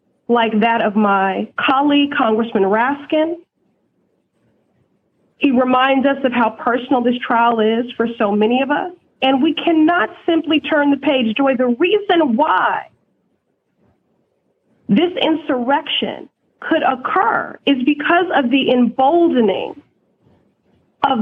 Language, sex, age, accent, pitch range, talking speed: English, female, 40-59, American, 240-315 Hz, 120 wpm